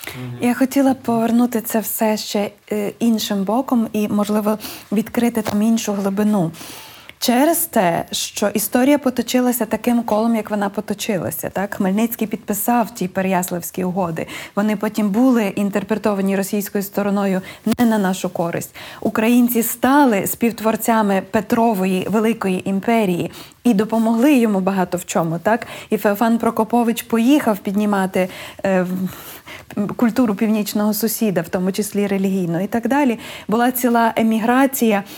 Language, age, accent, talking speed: Ukrainian, 20-39, native, 125 wpm